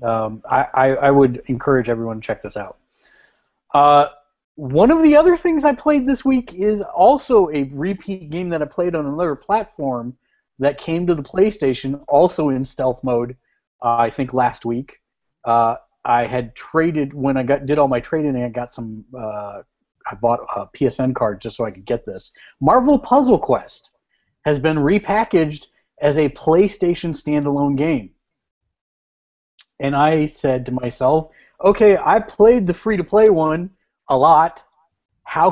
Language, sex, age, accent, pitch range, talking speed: English, male, 30-49, American, 130-165 Hz, 165 wpm